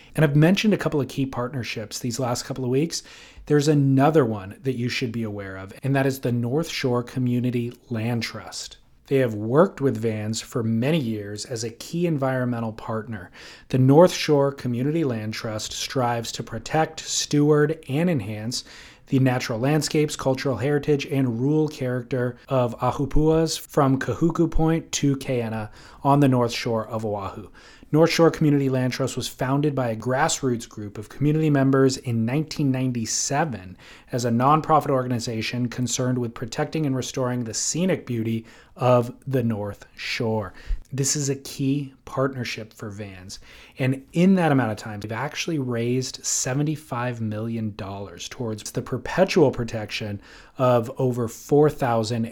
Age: 30-49